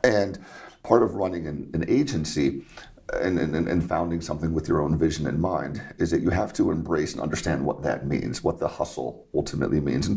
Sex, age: male, 40-59